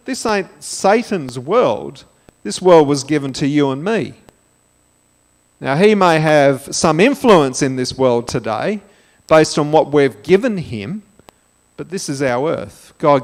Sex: male